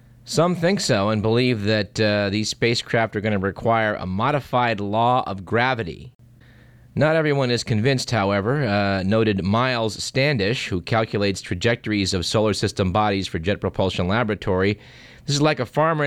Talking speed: 160 wpm